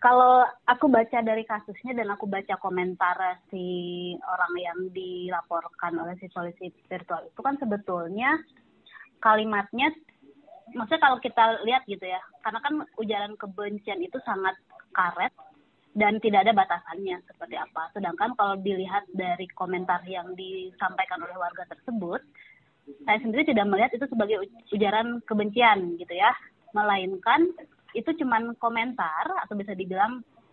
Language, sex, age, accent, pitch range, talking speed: Indonesian, female, 20-39, native, 190-235 Hz, 130 wpm